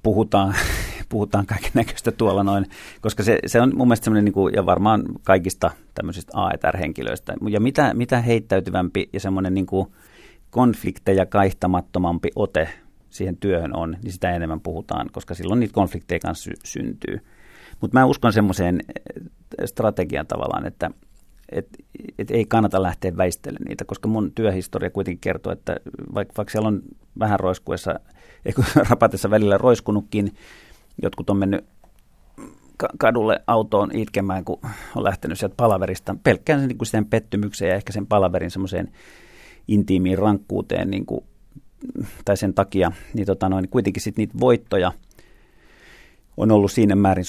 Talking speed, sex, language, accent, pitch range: 135 wpm, male, Finnish, native, 95-110 Hz